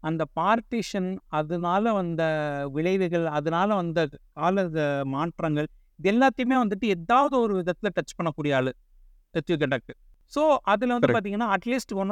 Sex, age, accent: male, 50-69, native